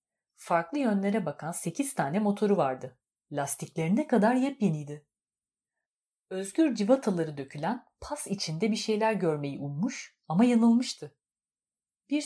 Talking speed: 110 wpm